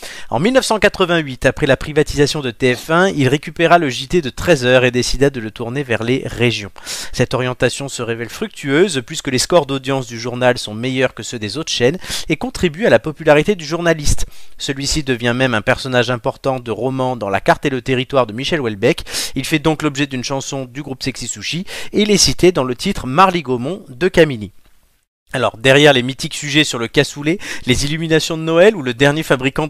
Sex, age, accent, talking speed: male, 30-49, French, 205 wpm